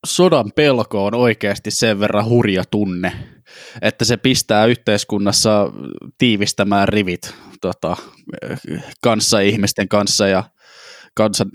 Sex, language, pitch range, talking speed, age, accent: male, Finnish, 100-115 Hz, 100 wpm, 20-39, native